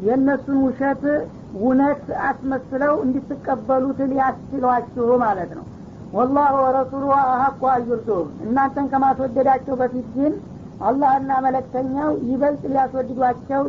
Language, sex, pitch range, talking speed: Amharic, female, 250-270 Hz, 95 wpm